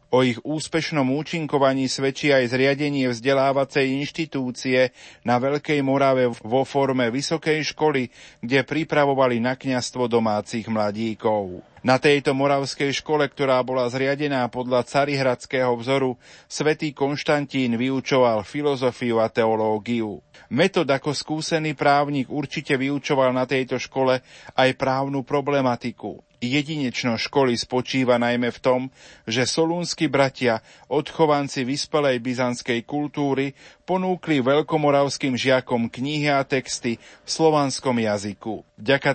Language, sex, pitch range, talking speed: Slovak, male, 125-145 Hz, 110 wpm